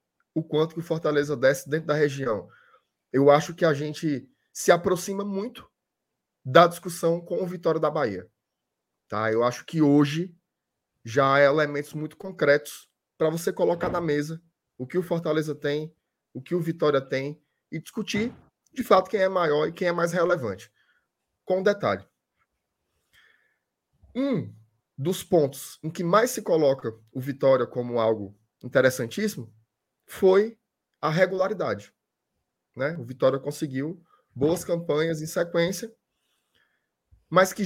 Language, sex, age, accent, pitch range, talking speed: Portuguese, male, 20-39, Brazilian, 145-185 Hz, 140 wpm